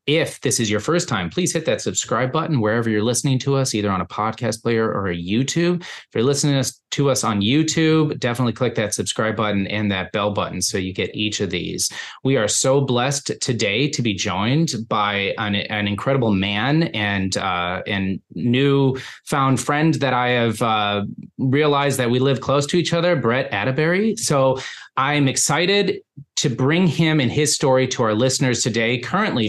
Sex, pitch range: male, 110-145 Hz